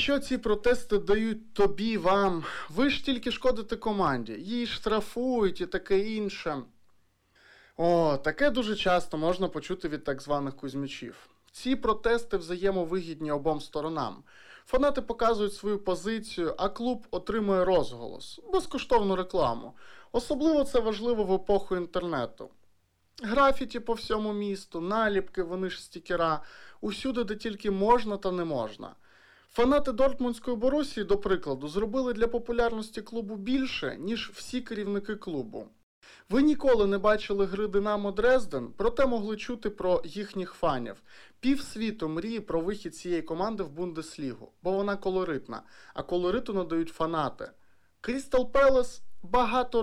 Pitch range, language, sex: 180-235 Hz, Ukrainian, male